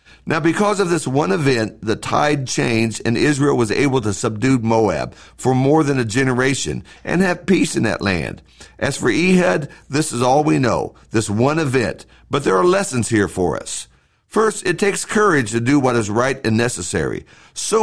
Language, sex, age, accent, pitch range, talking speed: English, male, 50-69, American, 115-155 Hz, 190 wpm